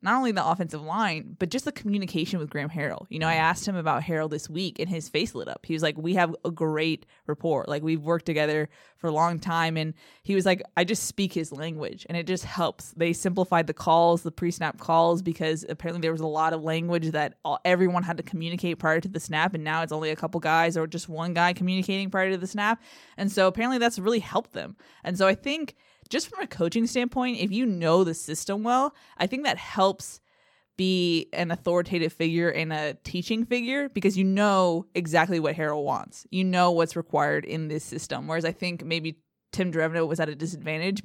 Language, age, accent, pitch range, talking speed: English, 20-39, American, 160-190 Hz, 225 wpm